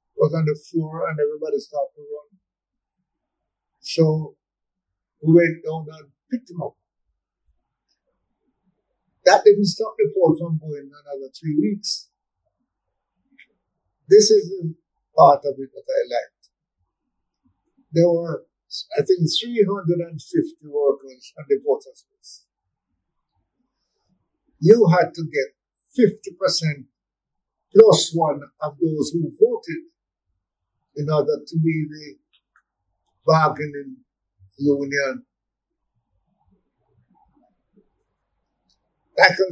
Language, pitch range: English, 140-205 Hz